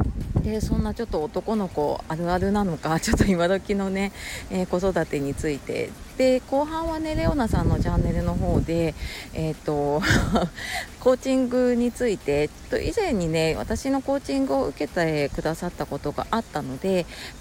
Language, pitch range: Japanese, 150-225 Hz